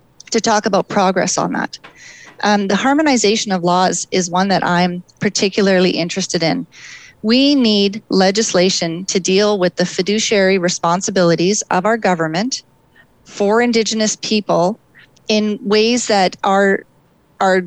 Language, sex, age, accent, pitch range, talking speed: English, female, 30-49, American, 180-215 Hz, 130 wpm